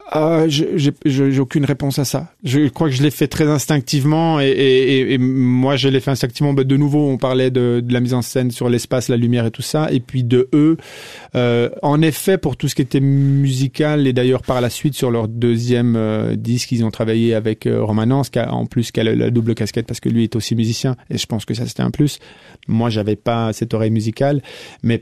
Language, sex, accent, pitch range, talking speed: French, male, French, 120-145 Hz, 245 wpm